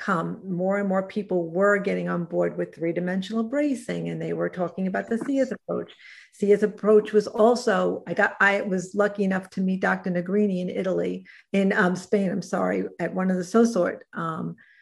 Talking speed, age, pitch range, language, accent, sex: 190 wpm, 50-69, 180-205 Hz, English, American, female